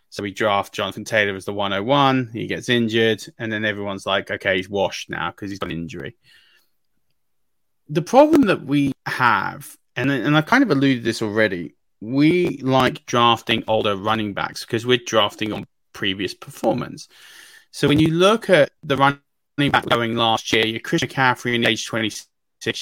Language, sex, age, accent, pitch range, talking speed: English, male, 20-39, British, 105-135 Hz, 175 wpm